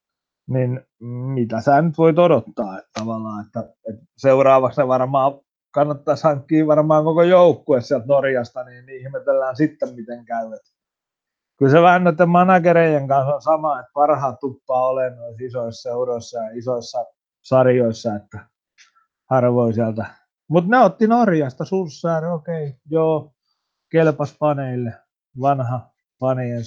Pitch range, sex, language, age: 120-160 Hz, male, Finnish, 30-49